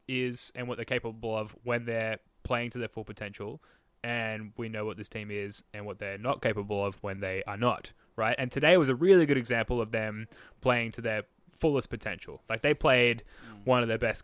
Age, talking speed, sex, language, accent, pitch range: 10-29, 220 wpm, male, English, Australian, 105-130 Hz